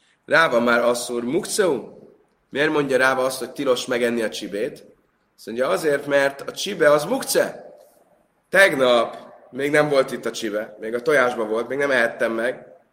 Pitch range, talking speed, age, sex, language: 125-195 Hz, 165 wpm, 30-49, male, Hungarian